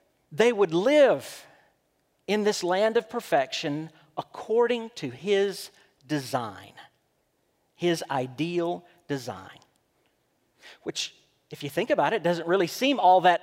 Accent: American